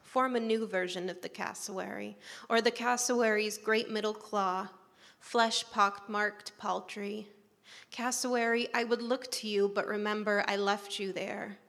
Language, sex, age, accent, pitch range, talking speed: English, female, 20-39, American, 195-220 Hz, 145 wpm